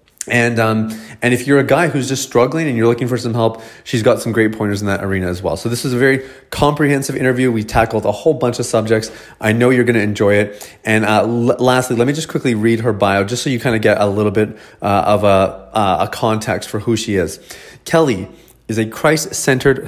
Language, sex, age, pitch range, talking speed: English, male, 30-49, 105-130 Hz, 245 wpm